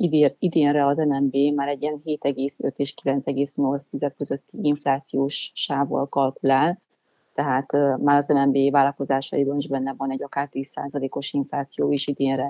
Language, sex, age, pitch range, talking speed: Hungarian, female, 30-49, 135-145 Hz, 120 wpm